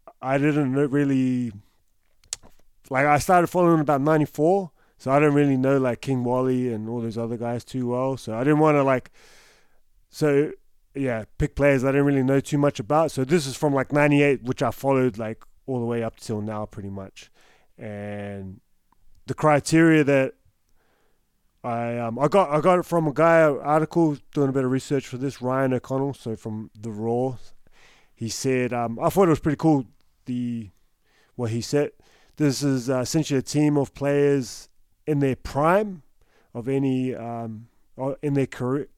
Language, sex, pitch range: English, male, 115-140 Hz